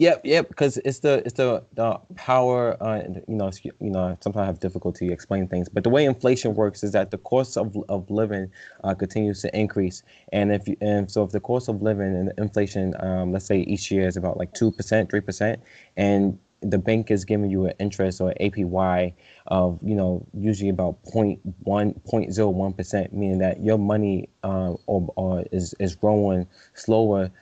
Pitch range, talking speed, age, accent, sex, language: 95-105 Hz, 210 wpm, 20-39, American, male, English